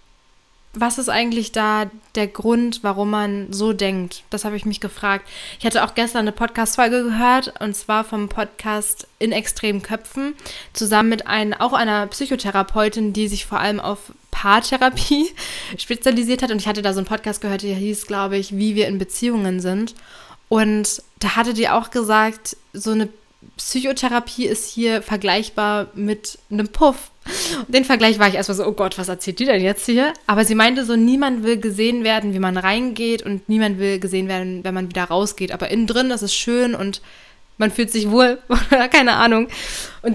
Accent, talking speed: German, 180 wpm